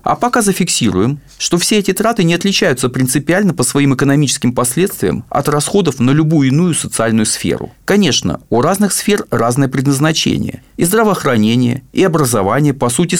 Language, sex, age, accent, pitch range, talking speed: Russian, male, 40-59, native, 125-185 Hz, 150 wpm